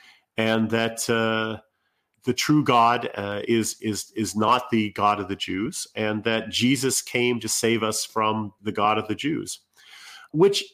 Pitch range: 105-125 Hz